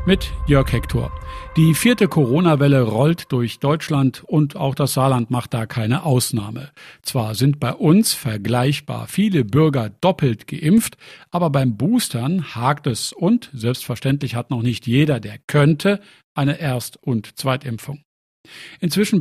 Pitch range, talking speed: 125-160 Hz, 135 wpm